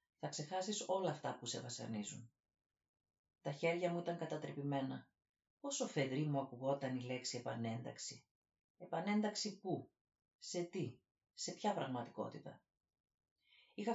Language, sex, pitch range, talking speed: Greek, female, 125-170 Hz, 115 wpm